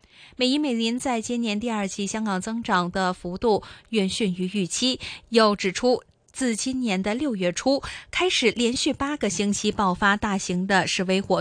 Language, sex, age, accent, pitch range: Chinese, female, 20-39, native, 195-250 Hz